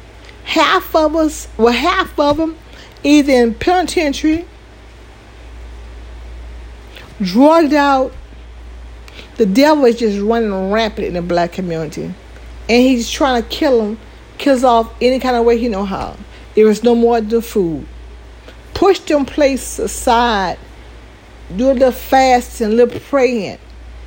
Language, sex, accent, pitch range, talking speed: English, female, American, 200-270 Hz, 130 wpm